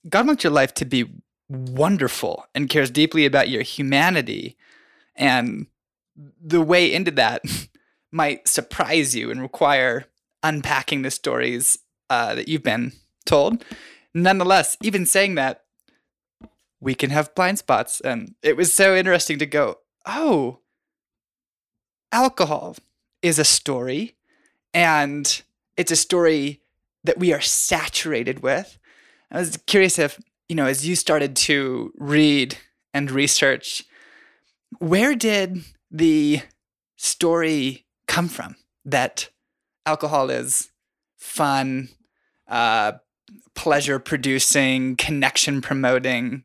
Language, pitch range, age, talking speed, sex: English, 135-180 Hz, 20-39, 115 wpm, male